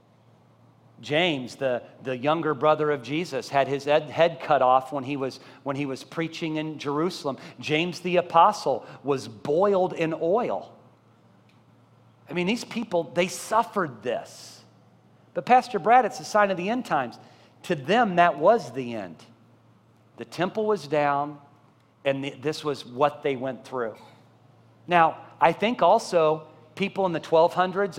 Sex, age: male, 40-59